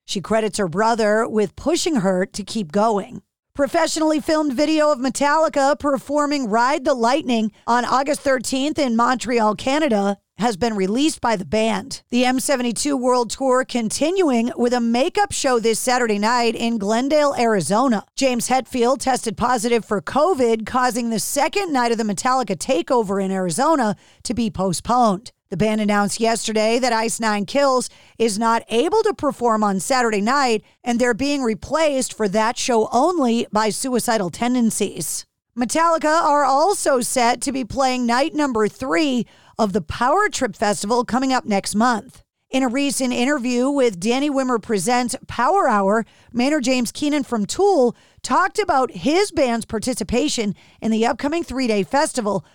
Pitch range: 220-275 Hz